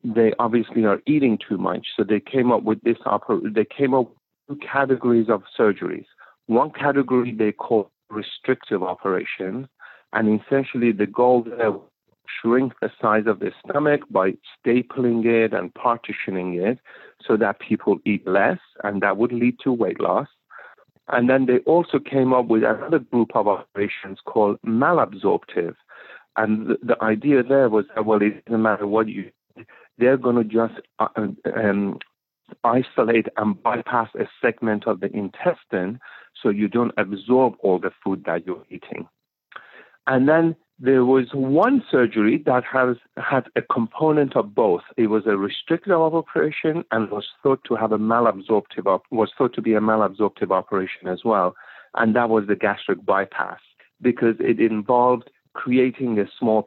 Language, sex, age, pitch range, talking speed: English, male, 50-69, 110-130 Hz, 160 wpm